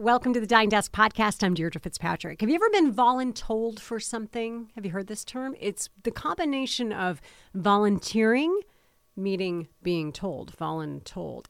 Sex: female